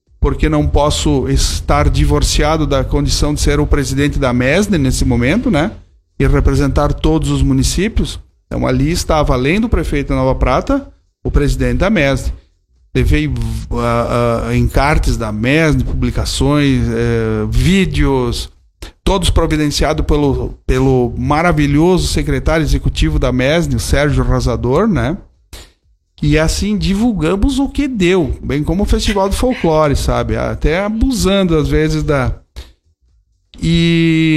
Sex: male